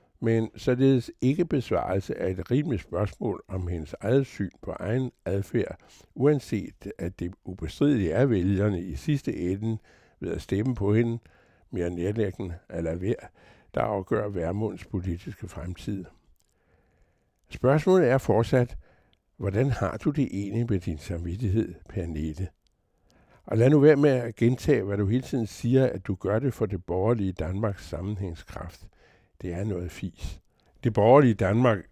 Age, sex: 60-79, male